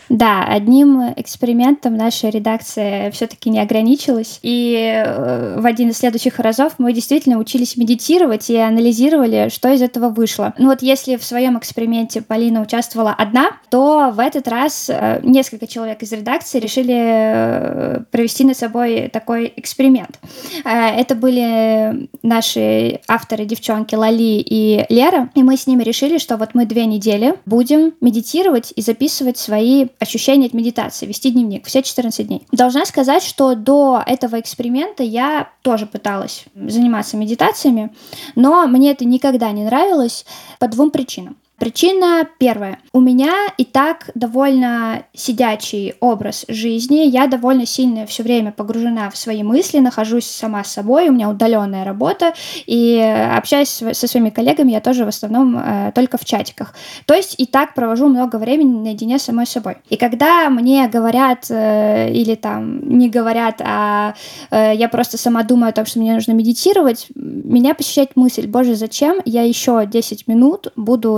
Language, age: Russian, 20-39